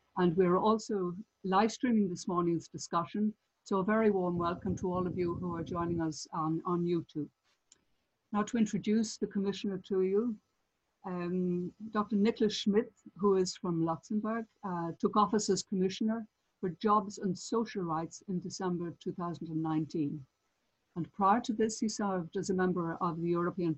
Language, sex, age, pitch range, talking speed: English, female, 60-79, 170-205 Hz, 160 wpm